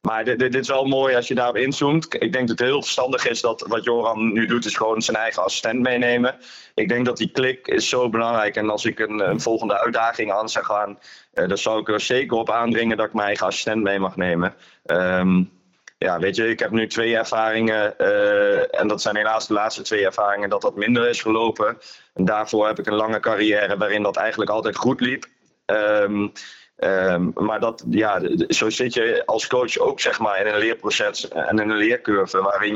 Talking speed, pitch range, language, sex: 220 wpm, 105-125 Hz, Dutch, male